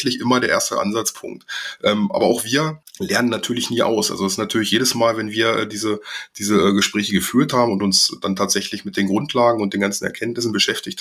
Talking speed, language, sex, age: 200 wpm, German, male, 20-39